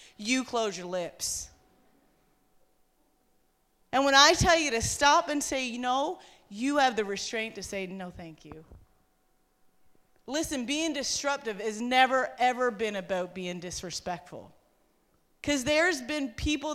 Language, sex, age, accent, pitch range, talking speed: English, female, 30-49, American, 235-295 Hz, 135 wpm